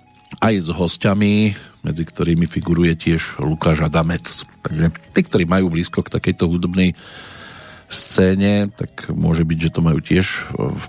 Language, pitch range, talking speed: Slovak, 85-110 Hz, 145 wpm